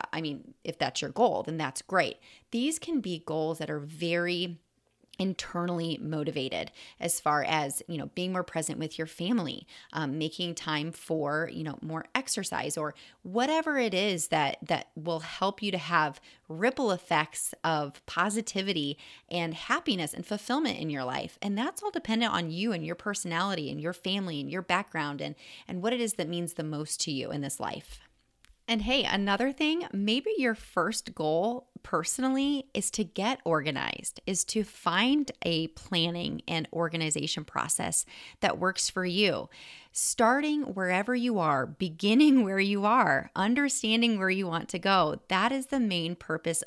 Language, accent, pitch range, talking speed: English, American, 160-225 Hz, 170 wpm